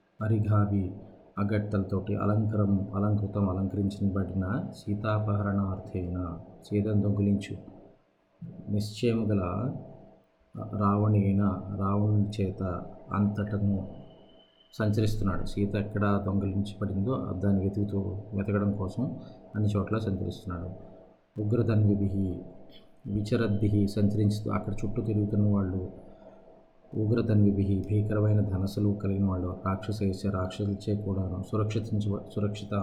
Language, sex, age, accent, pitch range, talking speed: Telugu, male, 20-39, native, 95-105 Hz, 75 wpm